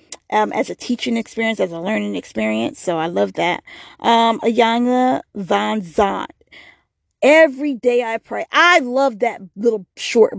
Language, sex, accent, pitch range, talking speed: English, female, American, 210-265 Hz, 150 wpm